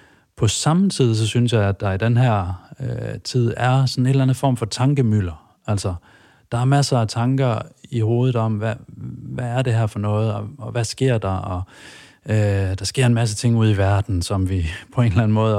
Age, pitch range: 30-49, 105-125 Hz